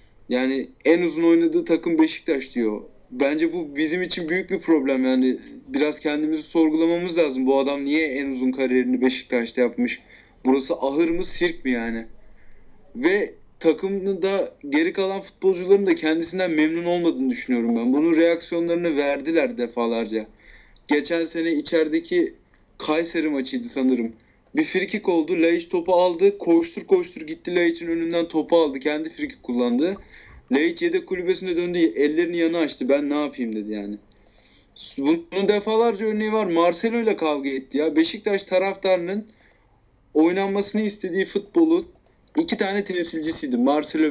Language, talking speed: Turkish, 135 wpm